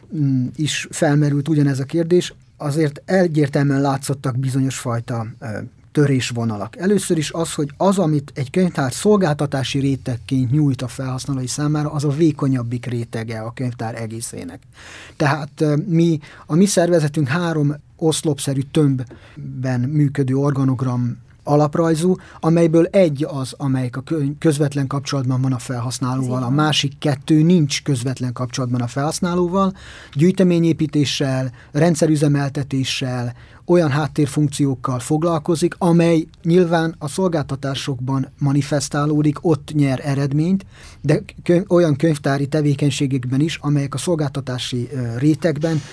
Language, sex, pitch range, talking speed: Hungarian, male, 130-160 Hz, 110 wpm